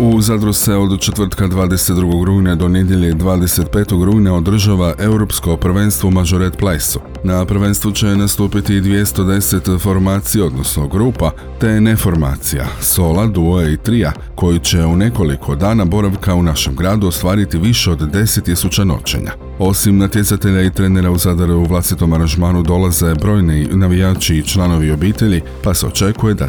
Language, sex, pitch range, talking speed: Croatian, male, 85-100 Hz, 145 wpm